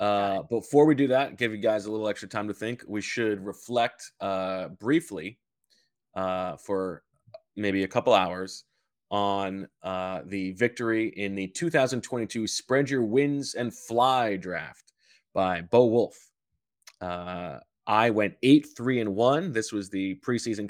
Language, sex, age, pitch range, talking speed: English, male, 20-39, 100-125 Hz, 140 wpm